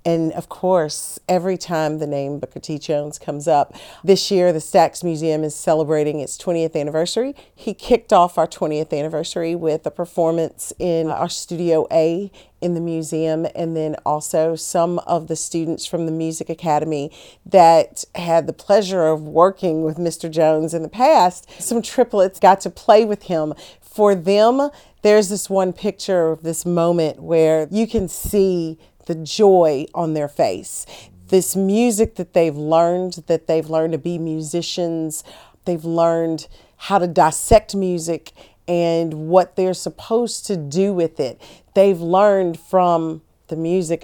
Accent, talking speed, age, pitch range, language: American, 160 wpm, 40-59, 160-185 Hz, English